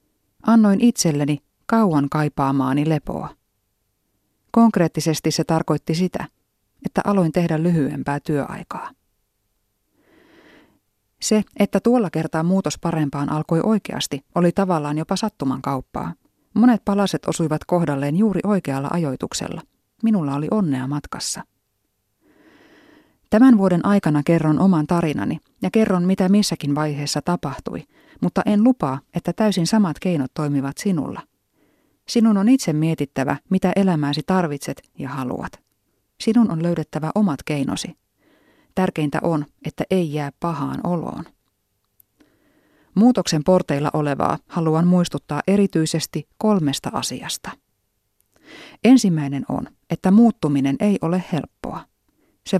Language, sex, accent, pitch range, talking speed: Finnish, female, native, 150-200 Hz, 110 wpm